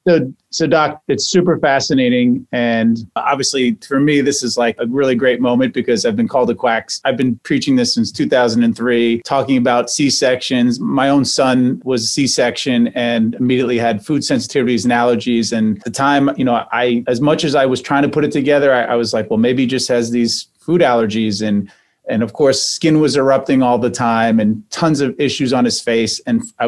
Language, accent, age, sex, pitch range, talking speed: English, American, 30-49, male, 115-145 Hz, 215 wpm